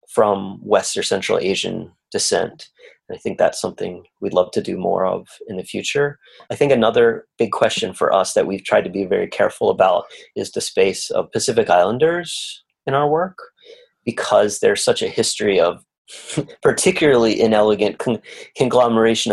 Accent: American